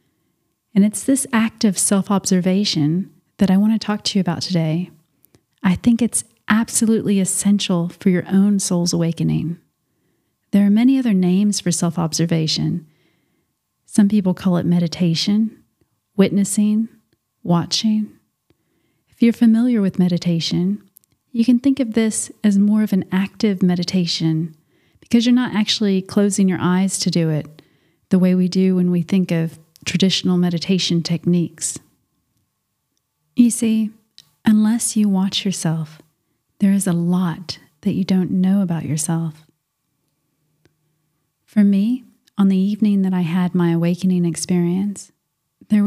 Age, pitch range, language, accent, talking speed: 40-59, 165-205 Hz, English, American, 135 wpm